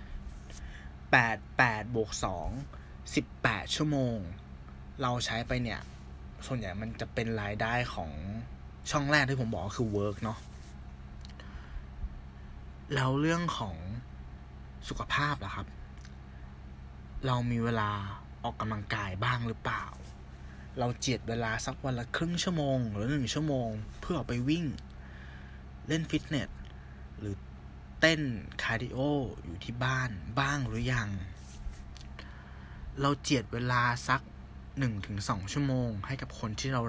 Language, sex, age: Thai, male, 20-39